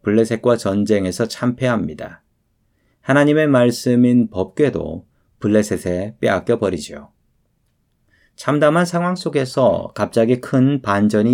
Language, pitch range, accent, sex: Korean, 105-140 Hz, native, male